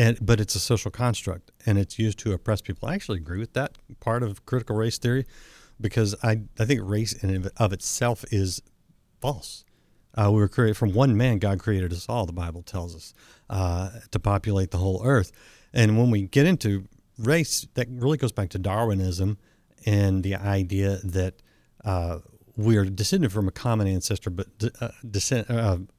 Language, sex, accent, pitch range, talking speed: English, male, American, 95-115 Hz, 190 wpm